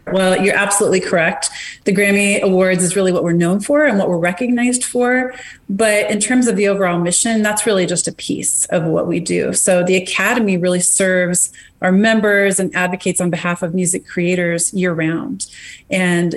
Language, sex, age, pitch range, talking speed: English, female, 30-49, 175-200 Hz, 185 wpm